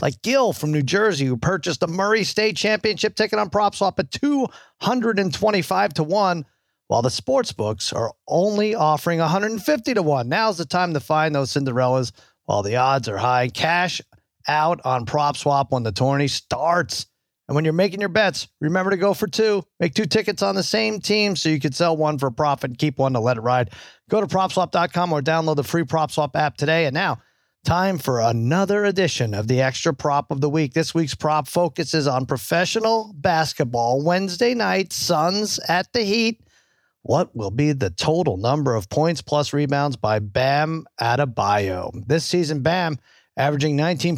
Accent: American